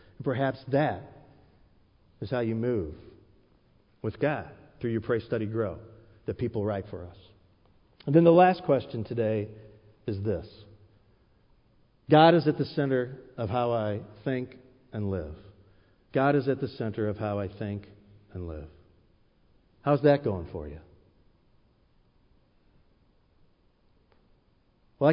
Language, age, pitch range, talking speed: English, 50-69, 95-125 Hz, 130 wpm